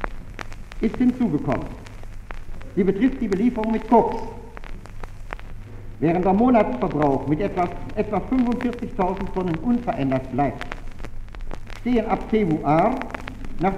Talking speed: 95 wpm